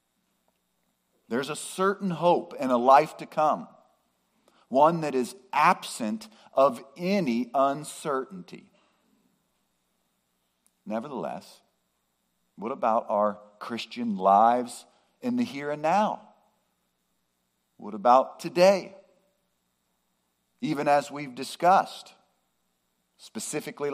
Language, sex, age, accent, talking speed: English, male, 50-69, American, 90 wpm